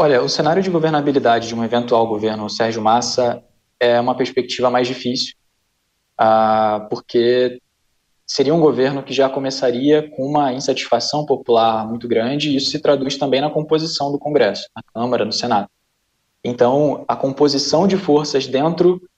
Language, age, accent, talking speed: Portuguese, 20-39, Brazilian, 150 wpm